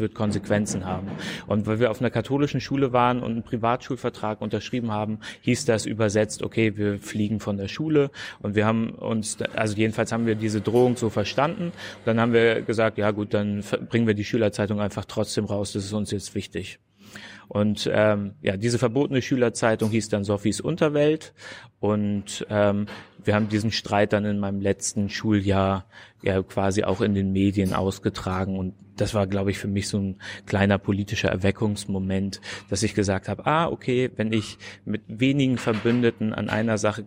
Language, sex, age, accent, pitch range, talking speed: German, male, 30-49, German, 100-115 Hz, 180 wpm